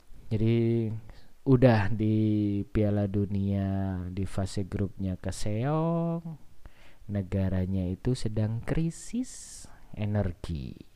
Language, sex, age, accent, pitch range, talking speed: Indonesian, male, 20-39, native, 95-110 Hz, 75 wpm